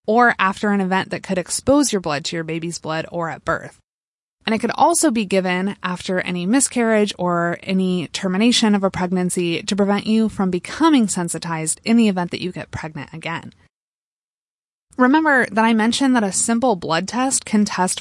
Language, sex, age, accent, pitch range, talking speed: English, female, 20-39, American, 175-225 Hz, 185 wpm